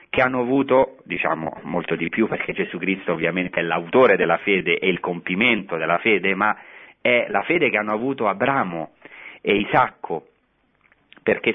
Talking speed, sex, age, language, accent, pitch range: 160 wpm, male, 40-59, Italian, native, 95-135 Hz